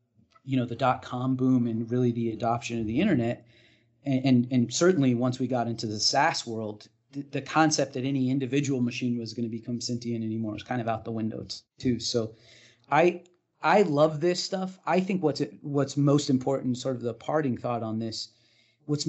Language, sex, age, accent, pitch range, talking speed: English, male, 30-49, American, 115-135 Hz, 200 wpm